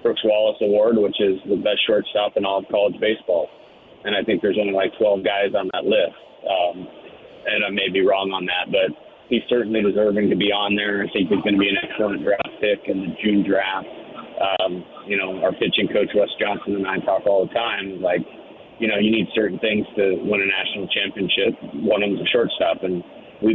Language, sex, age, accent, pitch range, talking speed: English, male, 40-59, American, 95-110 Hz, 225 wpm